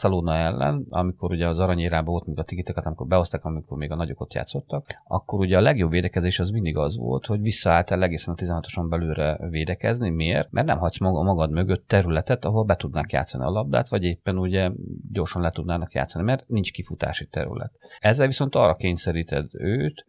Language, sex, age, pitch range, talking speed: Hungarian, male, 30-49, 85-105 Hz, 190 wpm